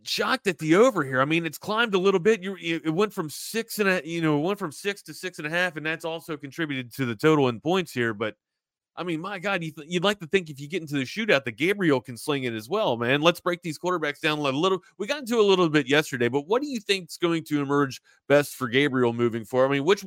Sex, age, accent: male, 30-49, American